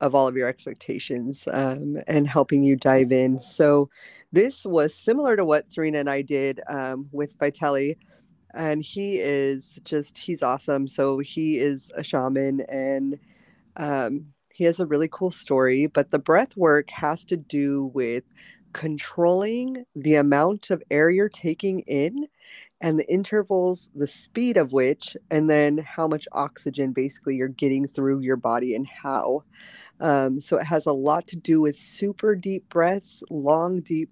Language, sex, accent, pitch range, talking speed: English, female, American, 140-180 Hz, 165 wpm